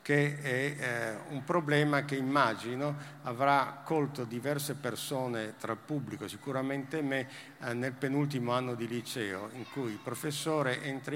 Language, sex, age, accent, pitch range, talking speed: Italian, male, 50-69, native, 120-155 Hz, 145 wpm